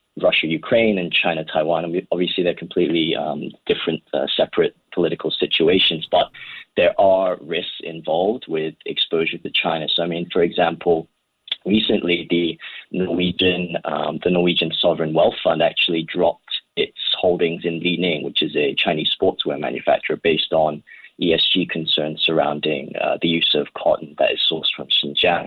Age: 20-39